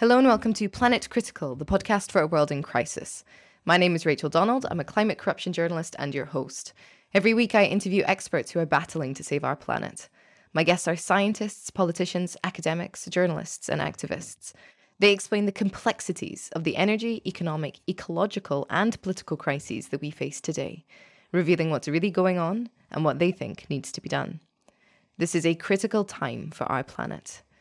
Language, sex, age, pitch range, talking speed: English, female, 20-39, 155-205 Hz, 185 wpm